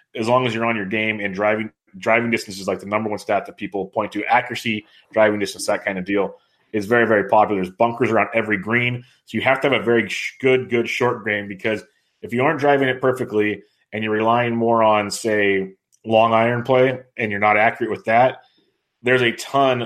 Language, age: English, 30-49